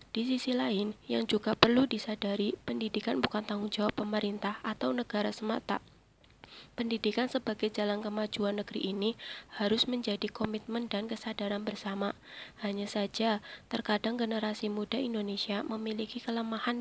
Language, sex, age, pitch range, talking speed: Indonesian, female, 20-39, 210-230 Hz, 125 wpm